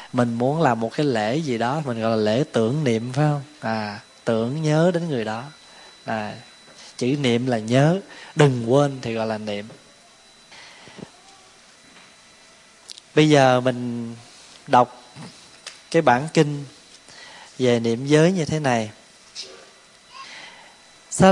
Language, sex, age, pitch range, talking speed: Vietnamese, male, 20-39, 120-165 Hz, 130 wpm